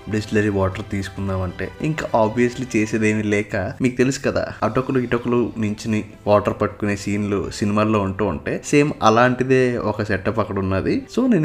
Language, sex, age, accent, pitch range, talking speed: Telugu, male, 20-39, native, 110-135 Hz, 150 wpm